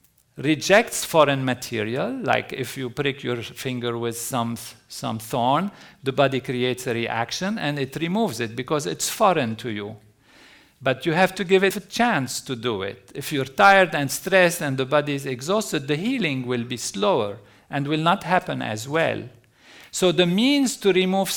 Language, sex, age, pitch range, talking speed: English, male, 50-69, 130-180 Hz, 185 wpm